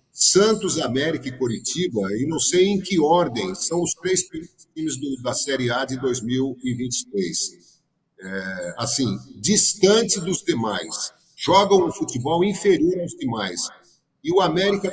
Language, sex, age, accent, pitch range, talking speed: Portuguese, male, 50-69, Brazilian, 120-175 Hz, 135 wpm